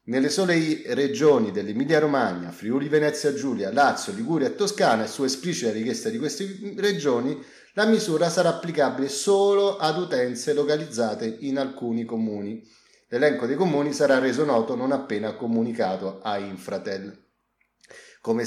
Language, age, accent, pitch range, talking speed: Italian, 30-49, native, 110-165 Hz, 125 wpm